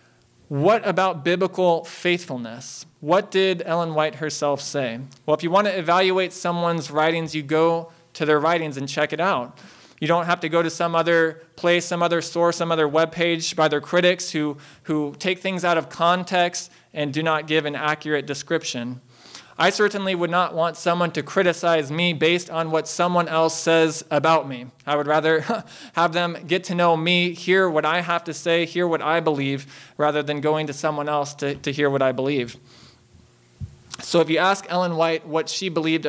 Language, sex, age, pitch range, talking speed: English, male, 20-39, 145-170 Hz, 195 wpm